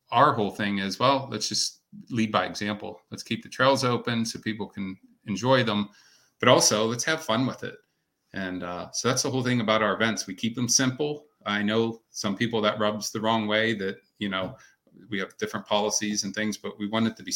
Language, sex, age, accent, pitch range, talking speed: English, male, 40-59, American, 100-115 Hz, 225 wpm